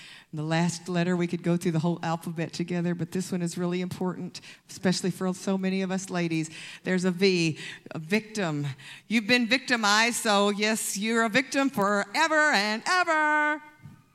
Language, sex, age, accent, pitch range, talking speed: English, female, 50-69, American, 255-400 Hz, 170 wpm